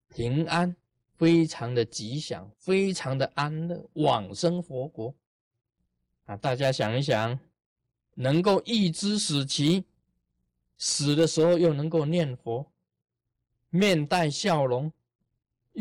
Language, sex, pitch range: Chinese, male, 115-165 Hz